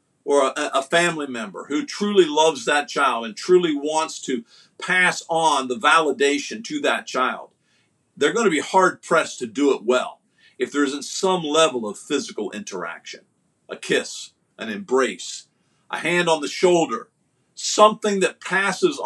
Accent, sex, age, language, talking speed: American, male, 50-69, English, 155 wpm